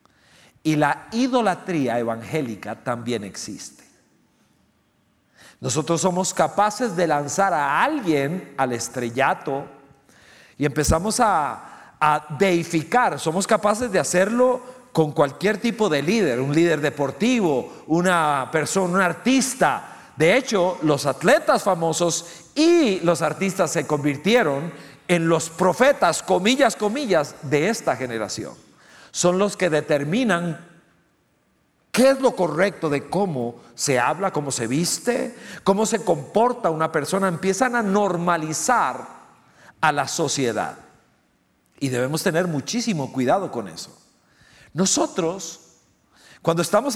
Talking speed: 115 wpm